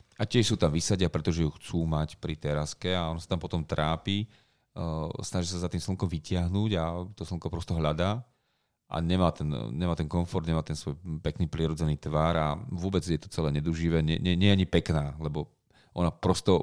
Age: 30-49